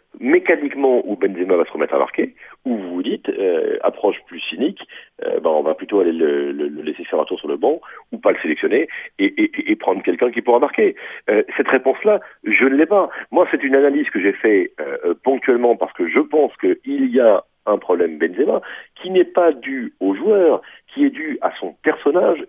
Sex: male